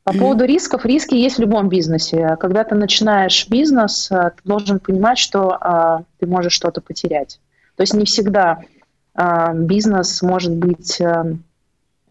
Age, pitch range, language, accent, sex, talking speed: 30-49, 170-210 Hz, Russian, native, female, 145 wpm